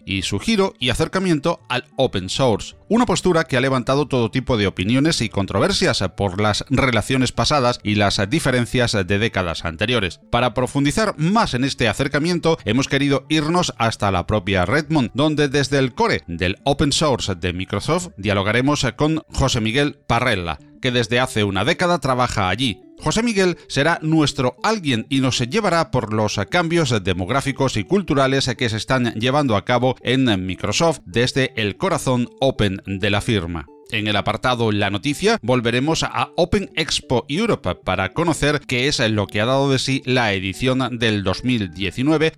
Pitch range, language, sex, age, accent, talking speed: 105-150 Hz, Spanish, male, 40-59, Spanish, 165 wpm